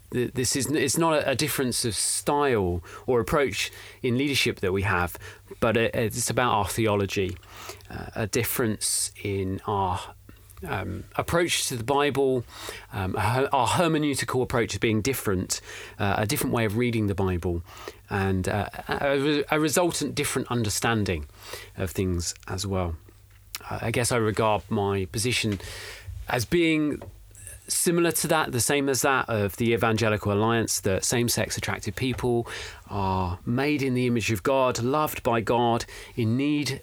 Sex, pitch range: male, 100-130 Hz